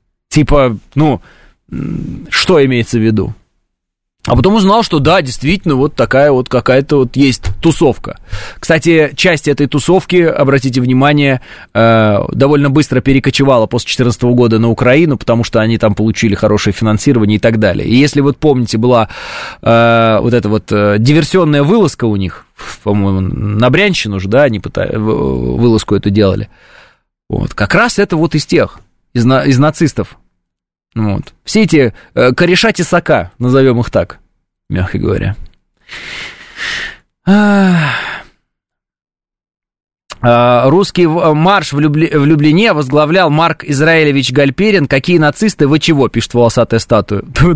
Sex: male